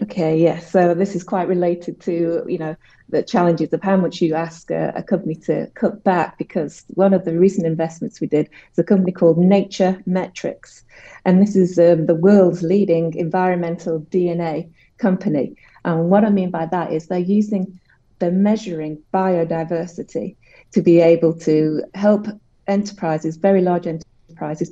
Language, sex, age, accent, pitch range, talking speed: English, female, 30-49, British, 160-185 Hz, 165 wpm